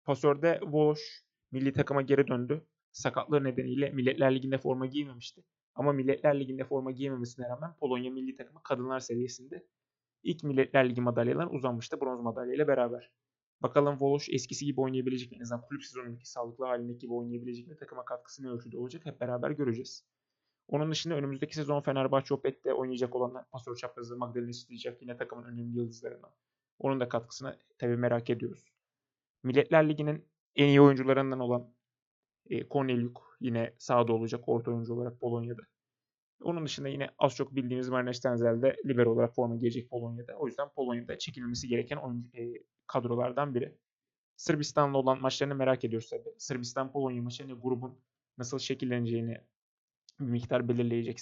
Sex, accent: male, native